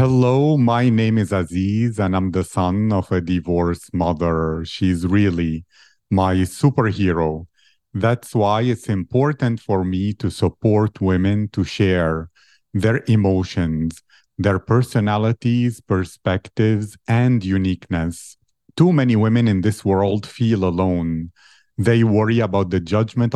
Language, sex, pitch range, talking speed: English, male, 95-115 Hz, 125 wpm